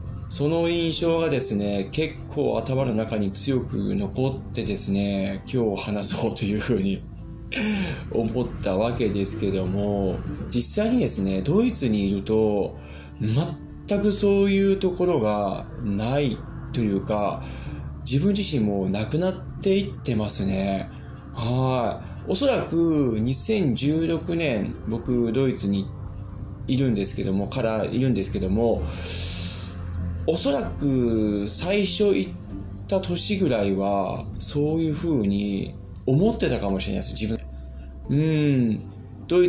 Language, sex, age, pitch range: Japanese, male, 20-39, 100-135 Hz